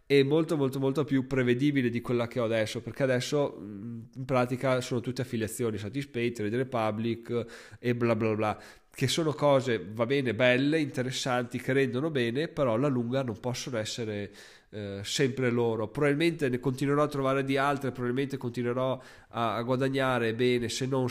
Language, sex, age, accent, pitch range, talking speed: Italian, male, 20-39, native, 115-135 Hz, 165 wpm